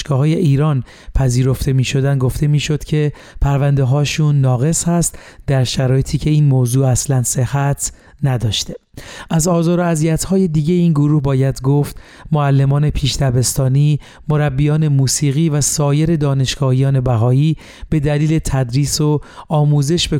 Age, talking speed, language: 40-59, 125 wpm, Persian